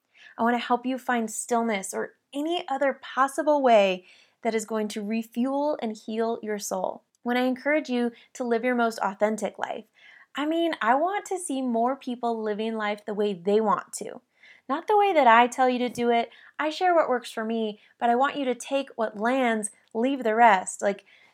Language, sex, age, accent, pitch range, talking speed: English, female, 20-39, American, 210-265 Hz, 210 wpm